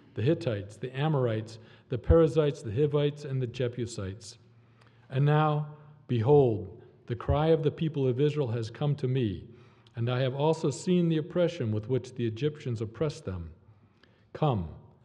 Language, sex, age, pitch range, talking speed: English, male, 40-59, 115-150 Hz, 155 wpm